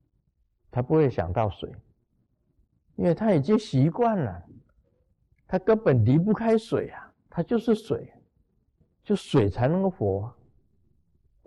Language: Chinese